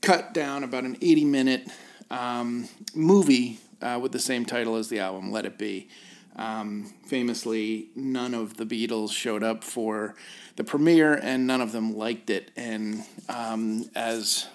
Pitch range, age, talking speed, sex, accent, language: 110-125 Hz, 40-59, 155 wpm, male, American, English